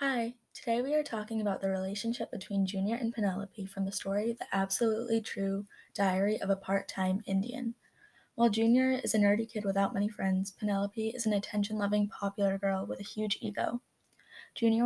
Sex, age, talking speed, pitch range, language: female, 10-29, 175 wpm, 195-225 Hz, English